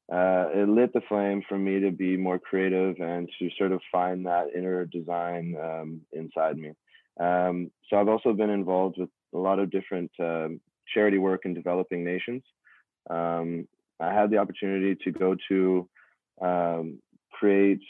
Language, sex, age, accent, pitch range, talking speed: English, male, 20-39, American, 90-100 Hz, 165 wpm